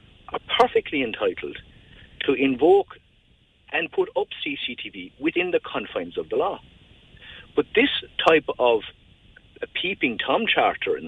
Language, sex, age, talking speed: English, male, 50-69, 130 wpm